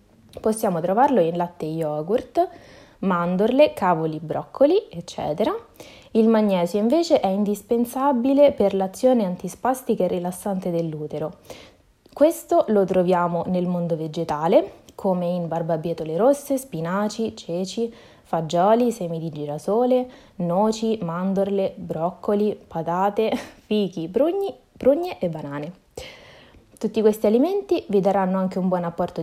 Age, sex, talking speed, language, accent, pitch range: 20-39, female, 115 wpm, Italian, native, 175-230 Hz